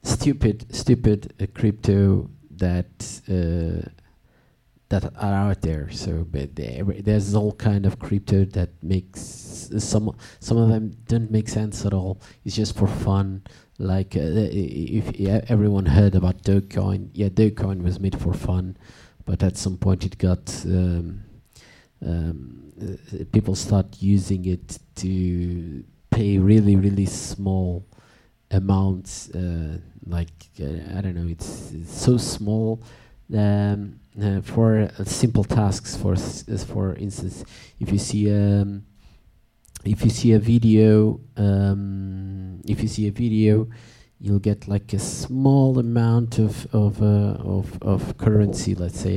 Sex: male